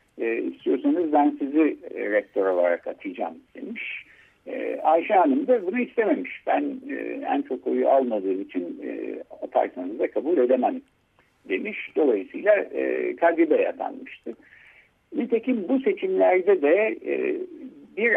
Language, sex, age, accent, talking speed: Turkish, male, 60-79, native, 100 wpm